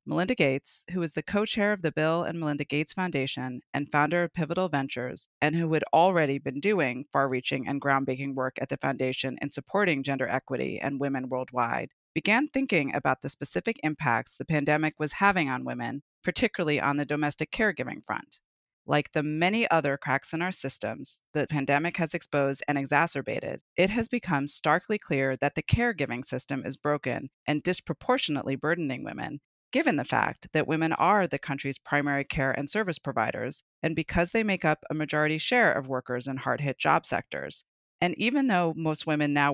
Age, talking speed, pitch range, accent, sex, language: 40-59, 185 wpm, 135-170 Hz, American, female, English